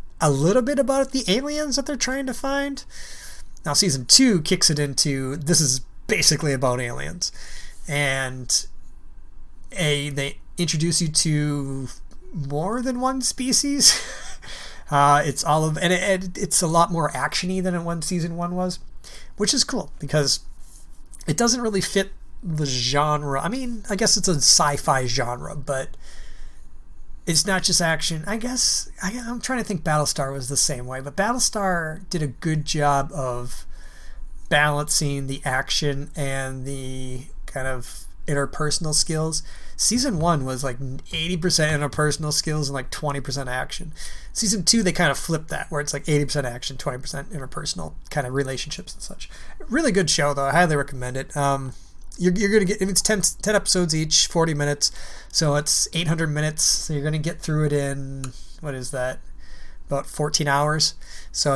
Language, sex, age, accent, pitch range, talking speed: English, male, 30-49, American, 135-180 Hz, 165 wpm